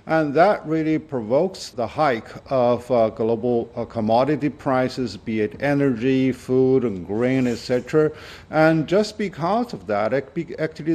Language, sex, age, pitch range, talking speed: English, male, 50-69, 125-150 Hz, 135 wpm